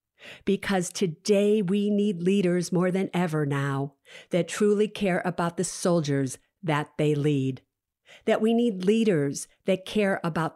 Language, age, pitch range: English, 50-69, 150-205 Hz